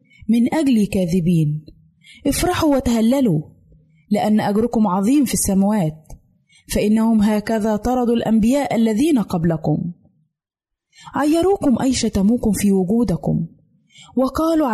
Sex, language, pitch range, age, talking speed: female, Arabic, 185-250 Hz, 20-39, 90 wpm